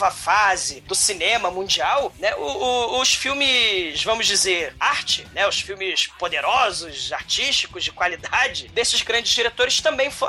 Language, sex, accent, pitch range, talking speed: Portuguese, male, Brazilian, 195-280 Hz, 140 wpm